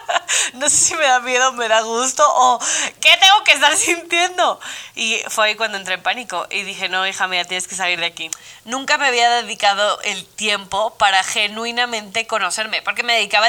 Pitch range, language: 200-255 Hz, Spanish